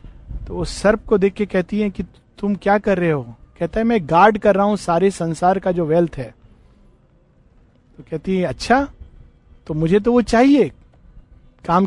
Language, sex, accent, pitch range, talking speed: Hindi, male, native, 155-220 Hz, 185 wpm